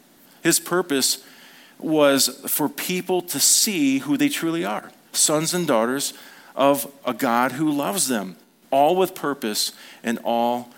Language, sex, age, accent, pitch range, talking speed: English, male, 40-59, American, 115-160 Hz, 140 wpm